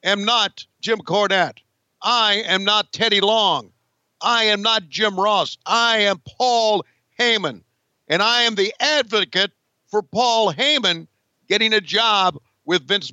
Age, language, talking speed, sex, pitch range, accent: 50-69, English, 140 wpm, male, 145-220 Hz, American